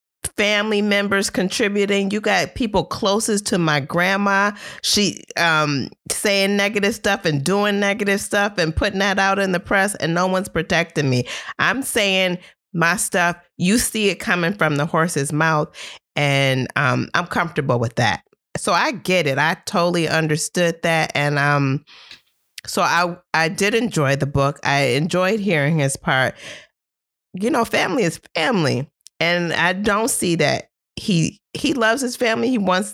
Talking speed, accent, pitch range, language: 160 wpm, American, 150-200 Hz, English